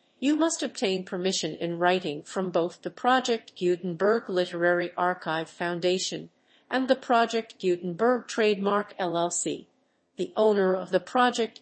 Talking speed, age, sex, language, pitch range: 130 wpm, 50-69, female, English, 175-225 Hz